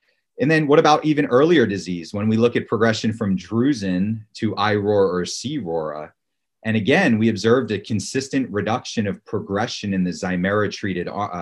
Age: 30-49